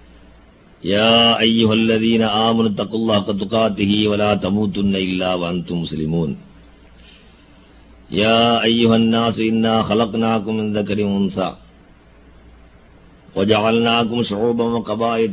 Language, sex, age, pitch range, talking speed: Tamil, male, 50-69, 90-110 Hz, 95 wpm